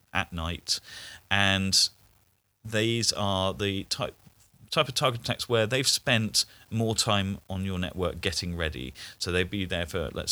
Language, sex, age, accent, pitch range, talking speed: English, male, 40-59, British, 95-115 Hz, 155 wpm